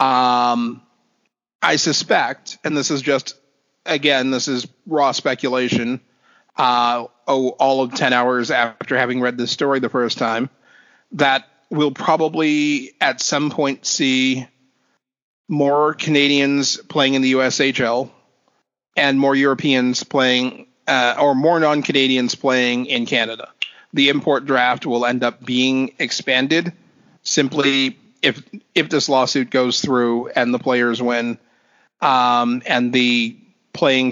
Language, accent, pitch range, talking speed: English, American, 120-140 Hz, 130 wpm